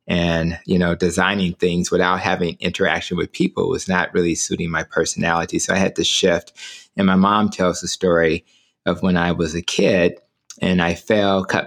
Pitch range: 80-90 Hz